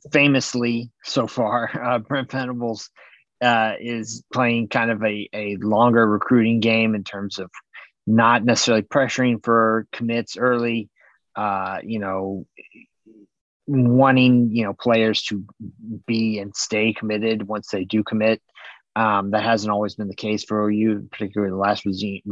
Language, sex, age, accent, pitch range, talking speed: English, male, 30-49, American, 100-120 Hz, 150 wpm